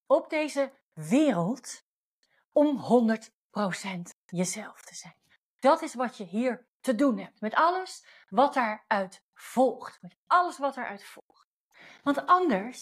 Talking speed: 125 wpm